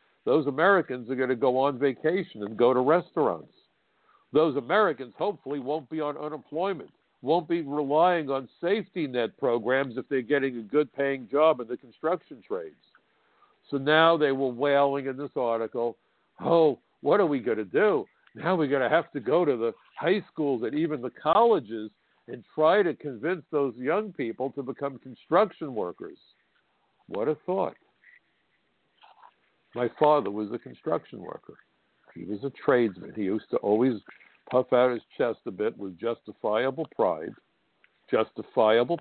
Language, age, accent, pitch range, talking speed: English, 60-79, American, 115-145 Hz, 160 wpm